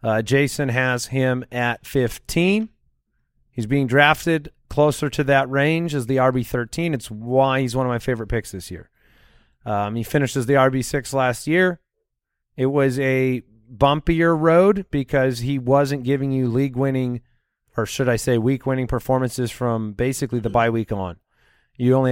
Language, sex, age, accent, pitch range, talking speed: English, male, 30-49, American, 115-140 Hz, 170 wpm